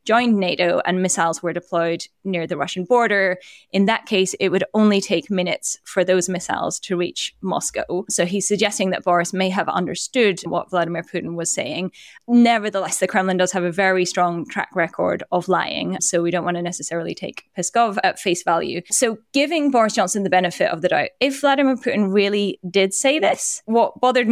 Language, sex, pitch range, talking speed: English, female, 185-235 Hz, 190 wpm